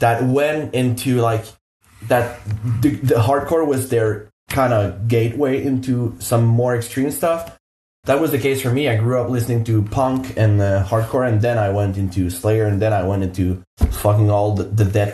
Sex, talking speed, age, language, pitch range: male, 195 wpm, 20-39, English, 105-125 Hz